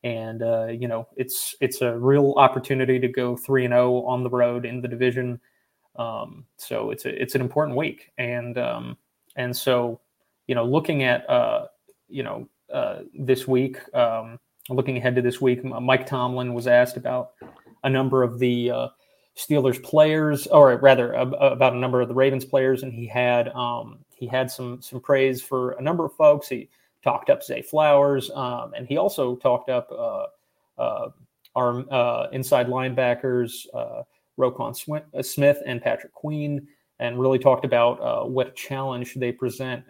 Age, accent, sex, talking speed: 30-49, American, male, 175 wpm